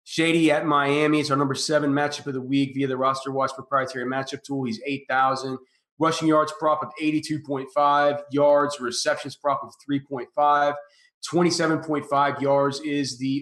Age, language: 30-49, English